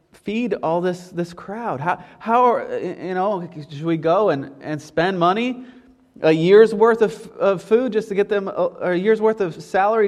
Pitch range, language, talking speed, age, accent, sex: 155-215 Hz, English, 195 wpm, 30-49, American, male